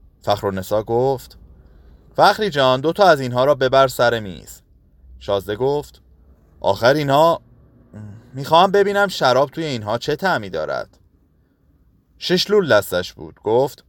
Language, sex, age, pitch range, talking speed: Persian, male, 30-49, 90-145 Hz, 130 wpm